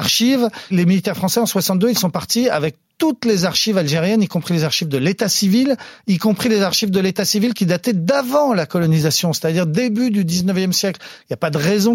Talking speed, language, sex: 220 wpm, French, male